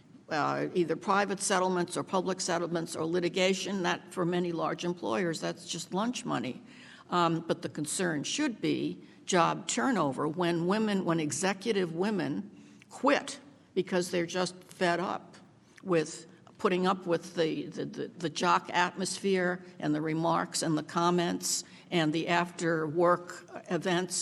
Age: 60-79